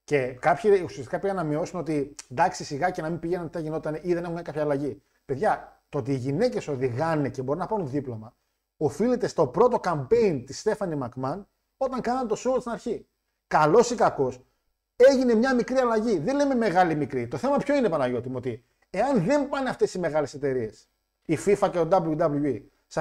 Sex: male